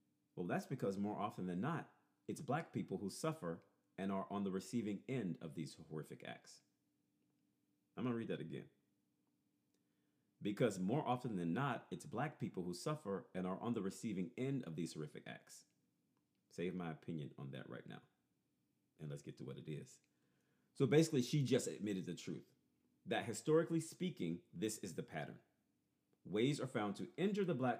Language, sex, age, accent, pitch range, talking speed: English, male, 40-59, American, 90-135 Hz, 180 wpm